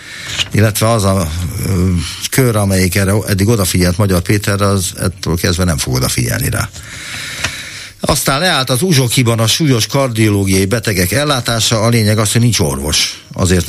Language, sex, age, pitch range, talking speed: Hungarian, male, 60-79, 85-110 Hz, 150 wpm